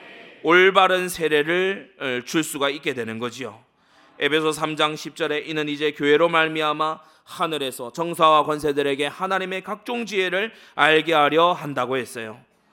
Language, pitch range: Korean, 135-180 Hz